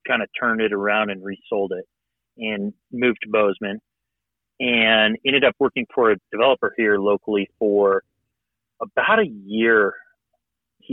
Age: 30-49